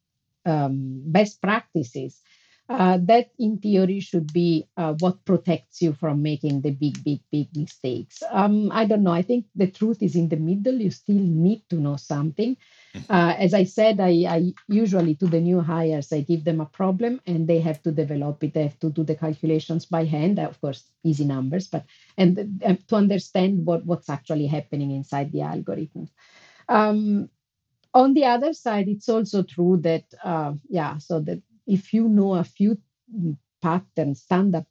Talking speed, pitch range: 180 wpm, 155-205 Hz